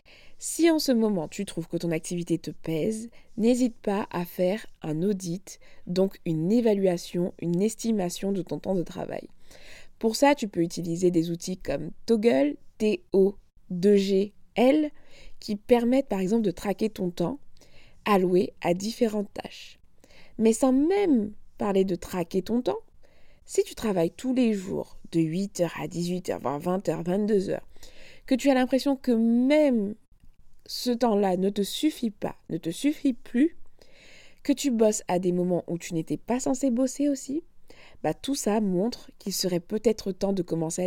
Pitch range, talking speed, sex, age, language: 175-245 Hz, 160 wpm, female, 20-39, French